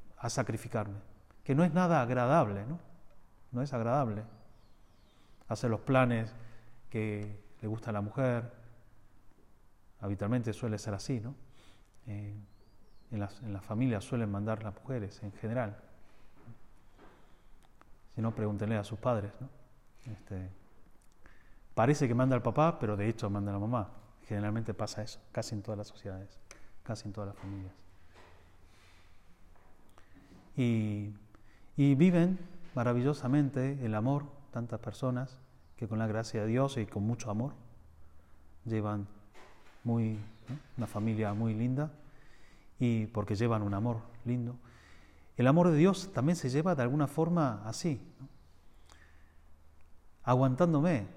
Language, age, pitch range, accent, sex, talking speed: Spanish, 30-49, 105-130 Hz, Argentinian, male, 130 wpm